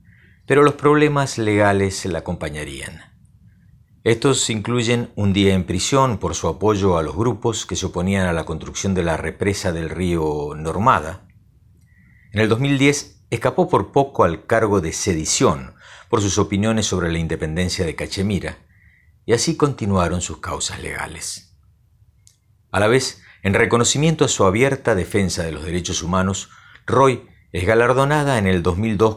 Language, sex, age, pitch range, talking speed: Spanish, male, 50-69, 90-110 Hz, 150 wpm